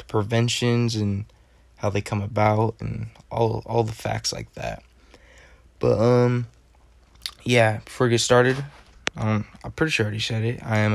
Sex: male